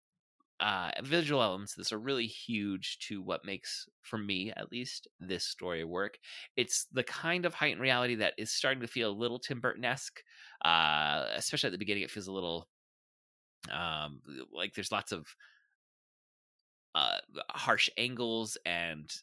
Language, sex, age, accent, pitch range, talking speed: English, male, 20-39, American, 90-120 Hz, 160 wpm